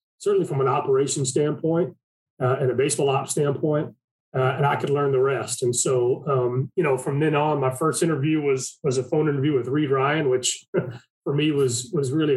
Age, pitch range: 30-49, 130-155 Hz